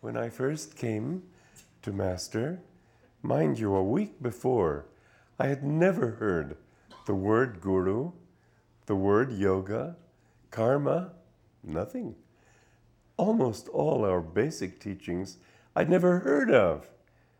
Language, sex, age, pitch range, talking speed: English, male, 50-69, 95-120 Hz, 110 wpm